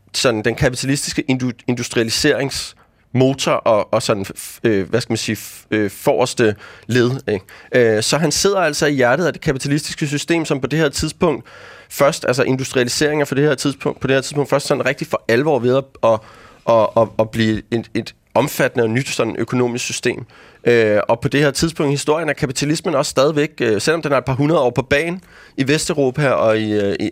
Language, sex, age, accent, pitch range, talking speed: Danish, male, 30-49, native, 110-145 Hz, 195 wpm